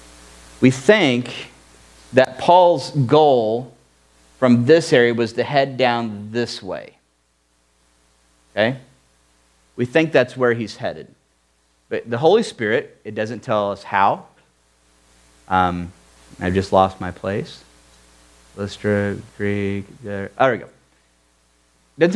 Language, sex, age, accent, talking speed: English, male, 40-59, American, 120 wpm